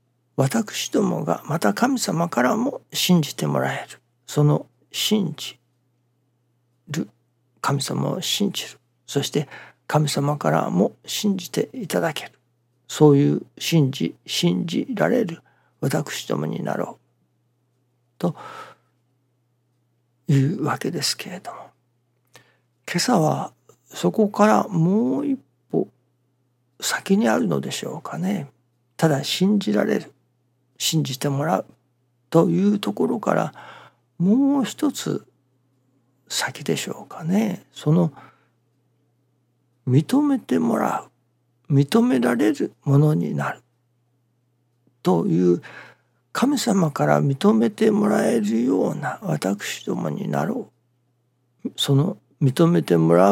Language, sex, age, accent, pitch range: Japanese, male, 60-79, native, 120-170 Hz